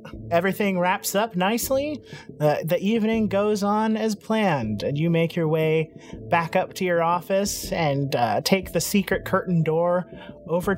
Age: 30-49